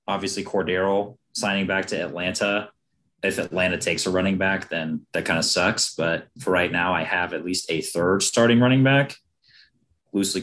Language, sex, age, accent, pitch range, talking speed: English, male, 30-49, American, 95-115 Hz, 180 wpm